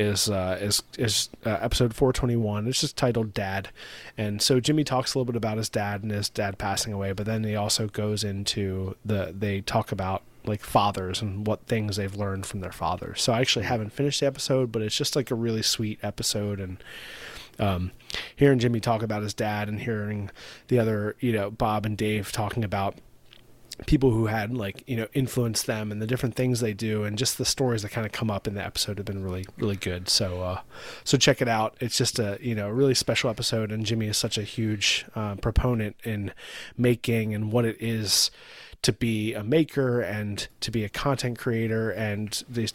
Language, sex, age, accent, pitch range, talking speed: English, male, 30-49, American, 105-125 Hz, 210 wpm